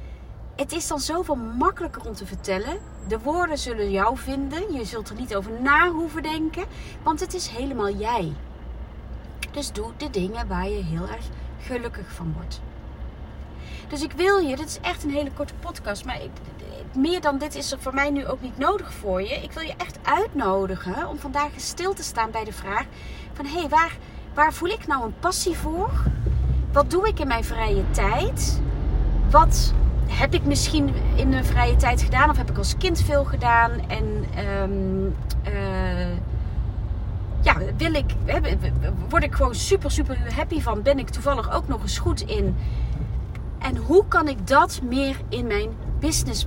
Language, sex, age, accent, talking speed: Dutch, female, 30-49, Dutch, 175 wpm